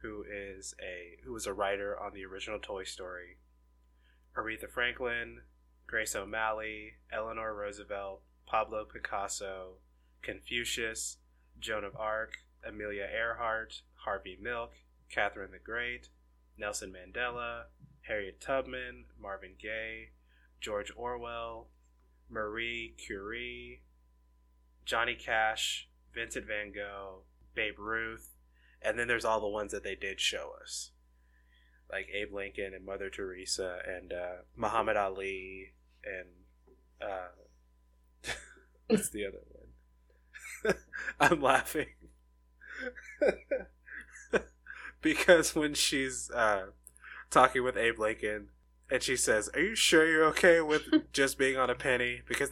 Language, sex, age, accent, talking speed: English, male, 20-39, American, 115 wpm